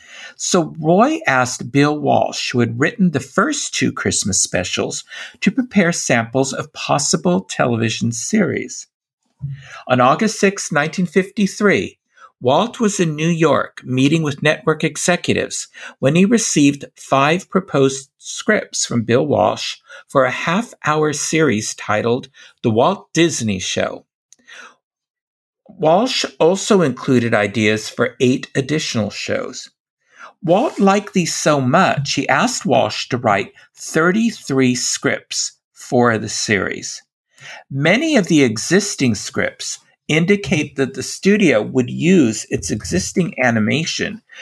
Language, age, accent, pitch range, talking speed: English, 50-69, American, 125-185 Hz, 120 wpm